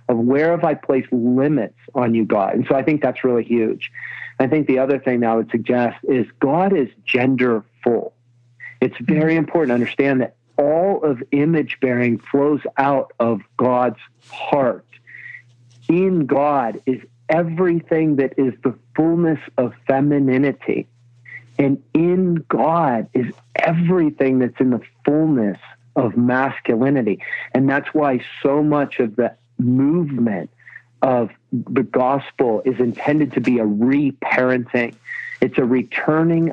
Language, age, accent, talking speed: English, 50-69, American, 140 wpm